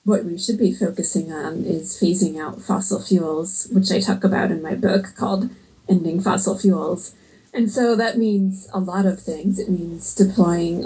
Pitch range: 185-210 Hz